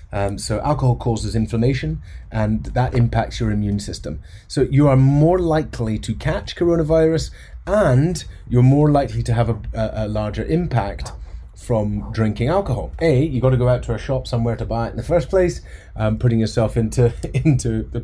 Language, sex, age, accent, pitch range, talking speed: English, male, 30-49, British, 105-135 Hz, 185 wpm